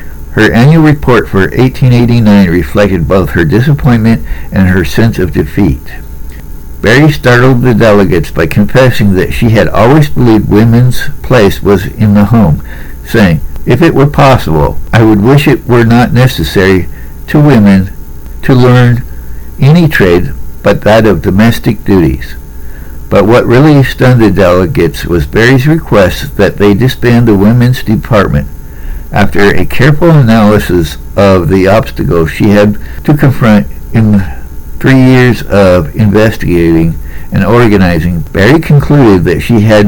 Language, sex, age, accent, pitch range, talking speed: English, male, 60-79, American, 80-125 Hz, 140 wpm